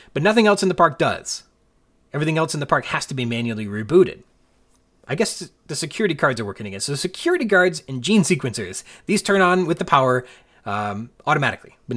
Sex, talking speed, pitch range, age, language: male, 200 wpm, 125-185 Hz, 30-49, English